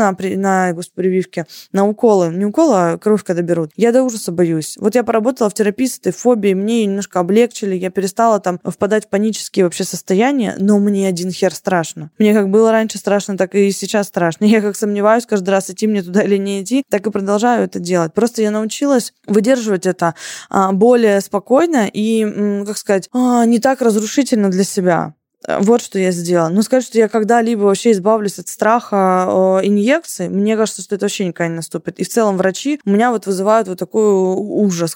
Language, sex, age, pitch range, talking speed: Russian, female, 20-39, 185-220 Hz, 195 wpm